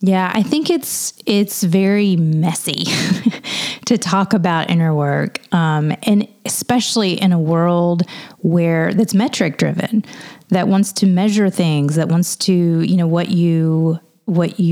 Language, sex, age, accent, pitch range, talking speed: English, female, 30-49, American, 165-210 Hz, 145 wpm